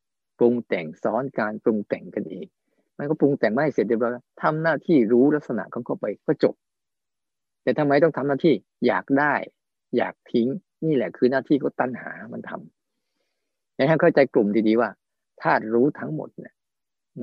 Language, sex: Thai, male